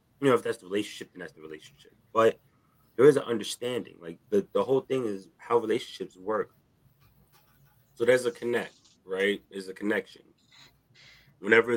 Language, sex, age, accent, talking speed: English, male, 30-49, American, 170 wpm